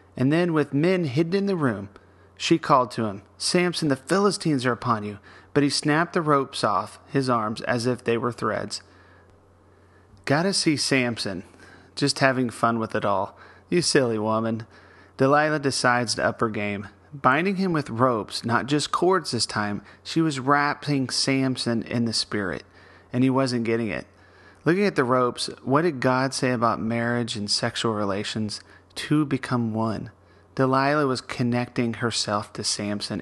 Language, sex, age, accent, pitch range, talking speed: English, male, 30-49, American, 100-135 Hz, 165 wpm